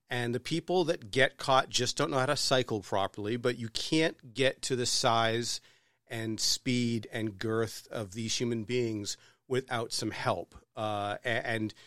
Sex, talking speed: male, 165 wpm